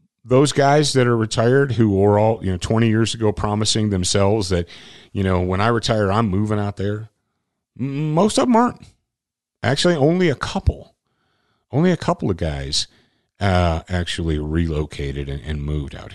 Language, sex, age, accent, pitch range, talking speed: English, male, 40-59, American, 90-125 Hz, 165 wpm